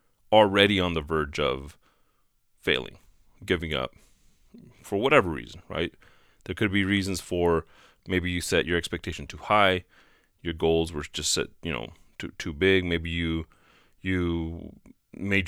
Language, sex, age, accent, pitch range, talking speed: English, male, 30-49, American, 80-95 Hz, 145 wpm